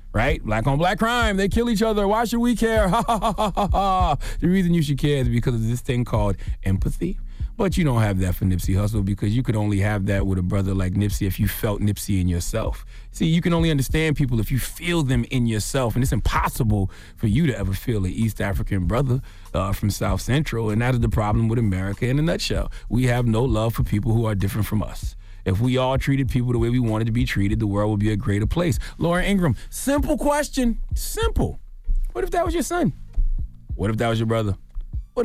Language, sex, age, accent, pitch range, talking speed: English, male, 30-49, American, 100-165 Hz, 230 wpm